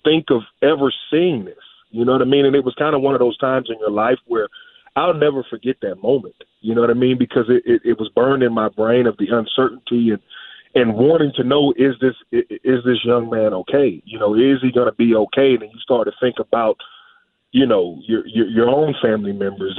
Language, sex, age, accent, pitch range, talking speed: English, male, 30-49, American, 115-135 Hz, 240 wpm